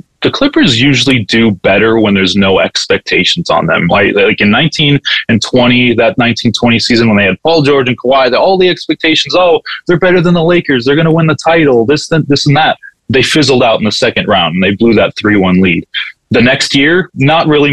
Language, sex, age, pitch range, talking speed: English, male, 20-39, 115-145 Hz, 215 wpm